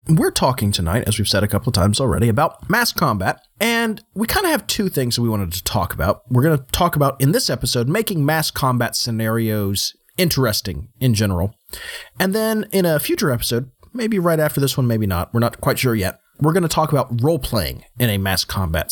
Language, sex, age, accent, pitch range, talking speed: English, male, 30-49, American, 105-160 Hz, 220 wpm